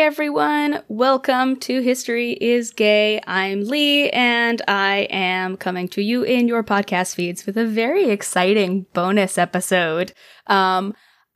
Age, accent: 20-39, American